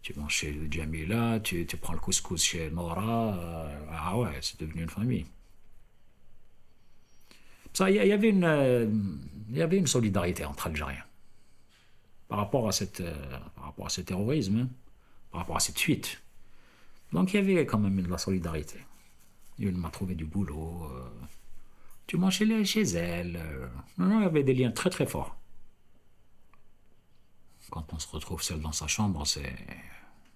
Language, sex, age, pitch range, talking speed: French, male, 50-69, 80-120 Hz, 160 wpm